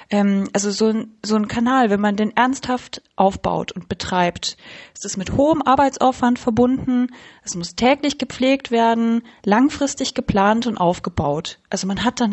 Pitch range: 195-240 Hz